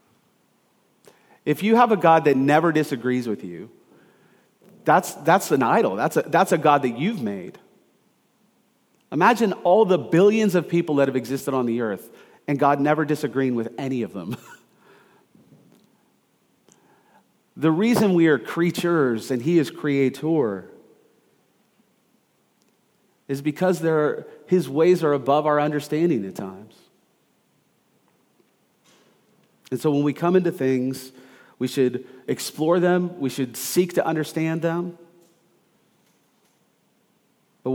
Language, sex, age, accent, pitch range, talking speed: English, male, 40-59, American, 135-175 Hz, 125 wpm